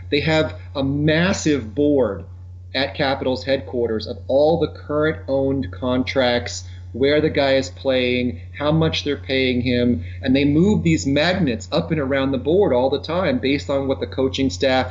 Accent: American